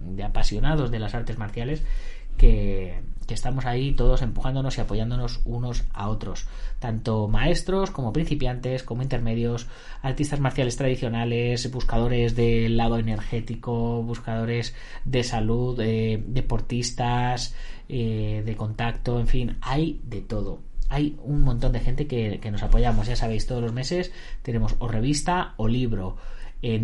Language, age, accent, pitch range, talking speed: Spanish, 20-39, Spanish, 115-135 Hz, 140 wpm